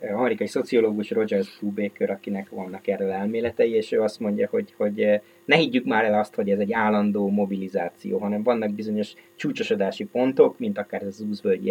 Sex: male